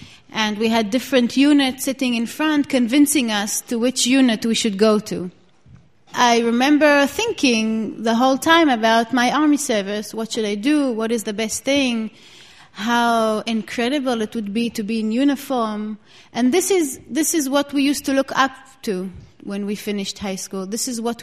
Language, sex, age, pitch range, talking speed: English, female, 30-49, 215-260 Hz, 185 wpm